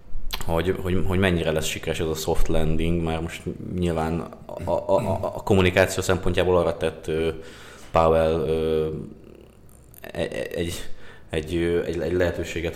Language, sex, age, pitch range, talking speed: Hungarian, male, 20-39, 85-95 Hz, 135 wpm